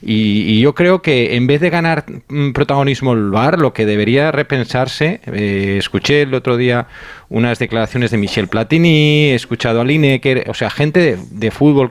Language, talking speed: Spanish, 185 wpm